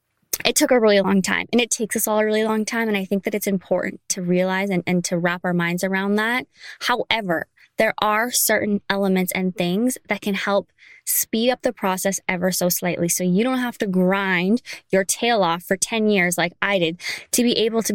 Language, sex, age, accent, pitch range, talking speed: English, female, 20-39, American, 185-220 Hz, 225 wpm